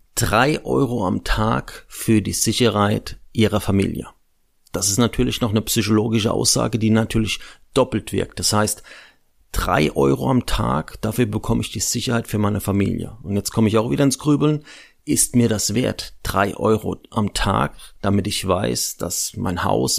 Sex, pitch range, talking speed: male, 100-120 Hz, 170 wpm